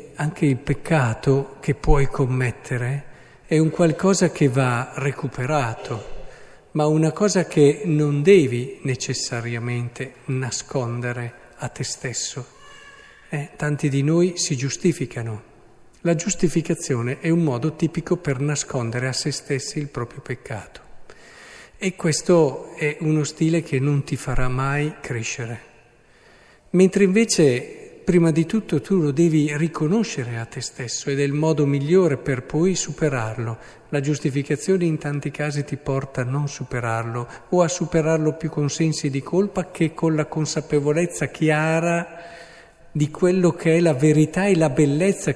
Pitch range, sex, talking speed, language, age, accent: 130-160 Hz, male, 140 wpm, Italian, 50-69, native